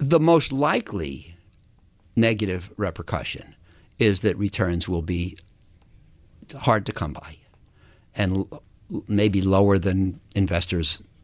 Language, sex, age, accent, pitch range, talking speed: English, male, 50-69, American, 95-125 Hz, 100 wpm